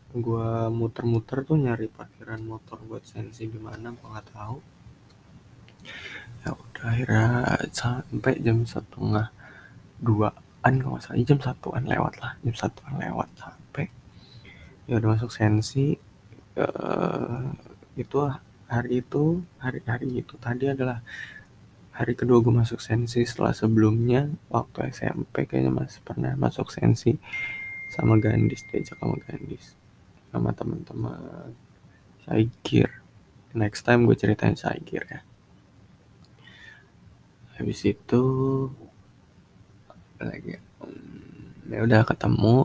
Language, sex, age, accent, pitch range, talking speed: English, male, 20-39, Indonesian, 110-130 Hz, 105 wpm